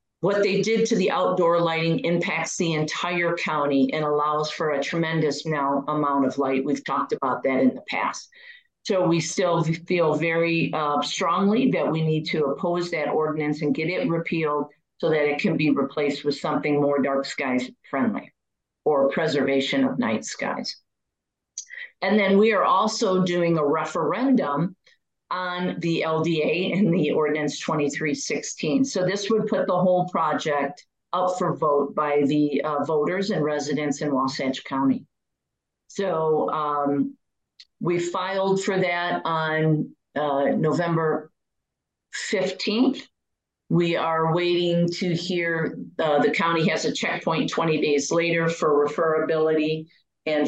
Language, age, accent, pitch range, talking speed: English, 50-69, American, 150-180 Hz, 145 wpm